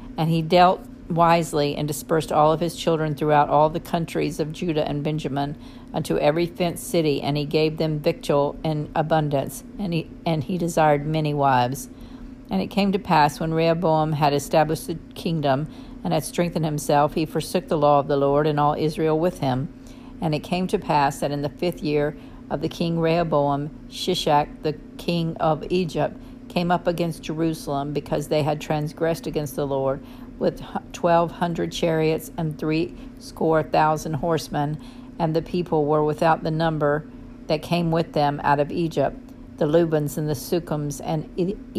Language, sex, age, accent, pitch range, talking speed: English, female, 50-69, American, 150-175 Hz, 175 wpm